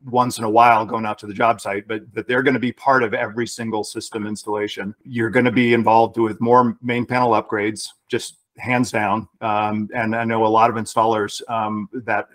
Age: 40-59